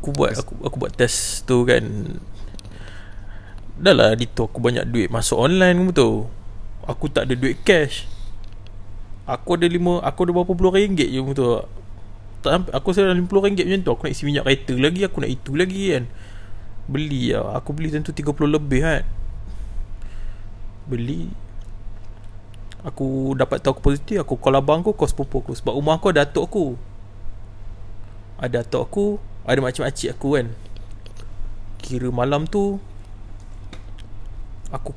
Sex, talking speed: male, 150 wpm